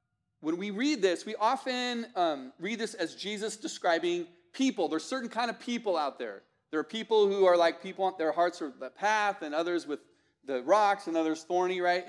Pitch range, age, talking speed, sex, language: 155-225 Hz, 40-59, 205 wpm, male, English